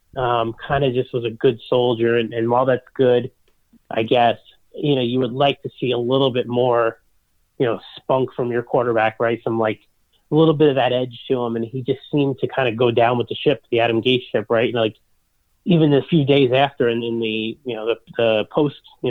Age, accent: 30-49, American